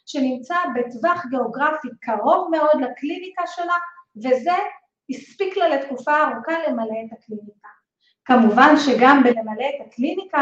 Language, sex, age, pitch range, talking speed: Hebrew, female, 30-49, 245-300 Hz, 115 wpm